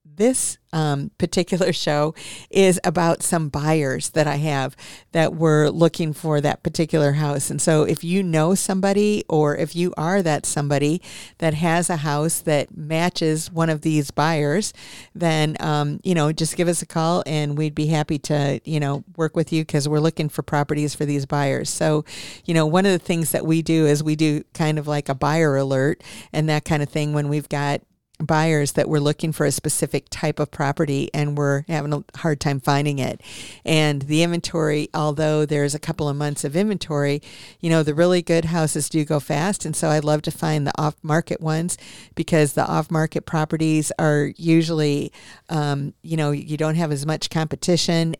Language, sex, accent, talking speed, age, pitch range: English, female, American, 195 wpm, 50-69, 150-165 Hz